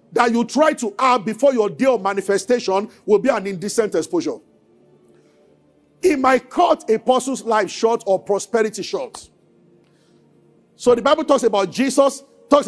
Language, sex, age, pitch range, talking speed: English, male, 50-69, 225-275 Hz, 145 wpm